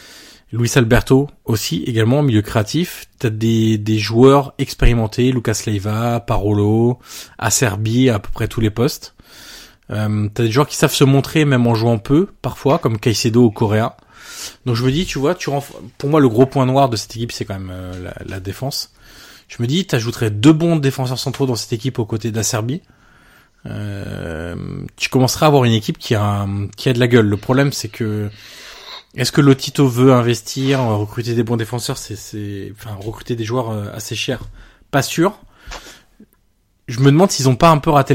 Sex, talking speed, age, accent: male, 195 wpm, 20-39, French